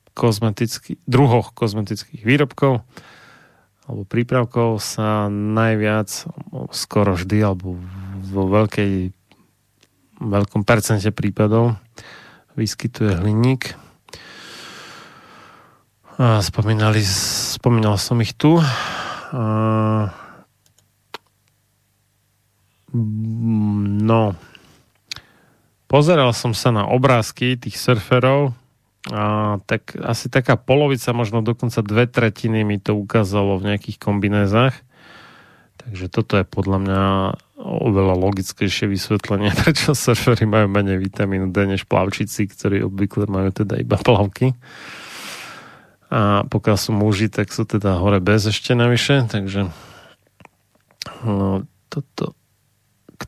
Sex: male